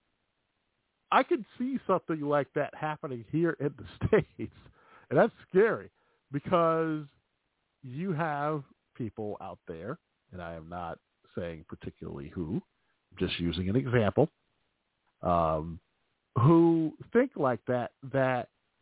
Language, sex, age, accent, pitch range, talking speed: English, male, 50-69, American, 110-150 Hz, 120 wpm